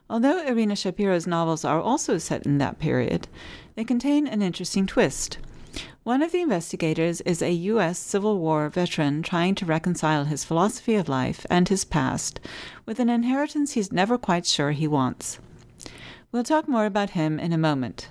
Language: English